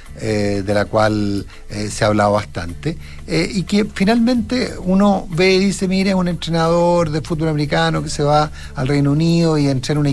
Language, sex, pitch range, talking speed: Spanish, male, 125-175 Hz, 195 wpm